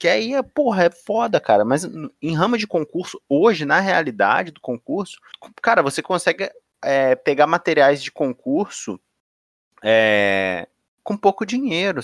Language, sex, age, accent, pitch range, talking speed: Portuguese, male, 20-39, Brazilian, 130-175 Hz, 135 wpm